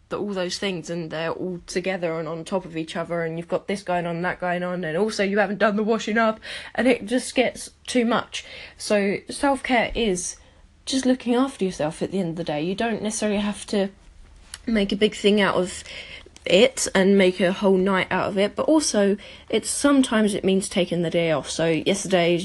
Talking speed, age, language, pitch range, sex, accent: 225 wpm, 10-29, English, 175-205 Hz, female, British